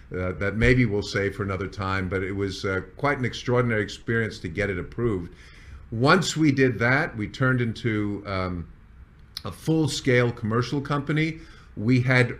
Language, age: English, 50-69